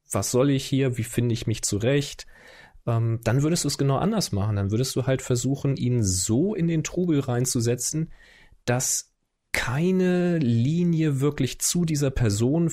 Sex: male